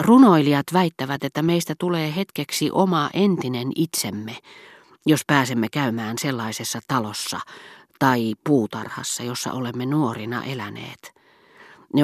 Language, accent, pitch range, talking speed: Finnish, native, 120-160 Hz, 105 wpm